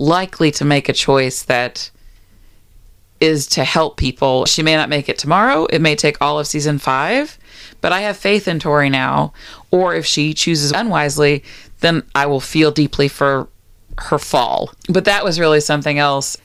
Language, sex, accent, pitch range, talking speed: English, female, American, 140-175 Hz, 180 wpm